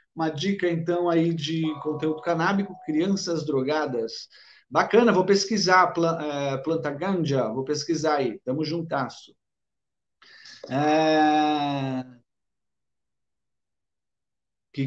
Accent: Brazilian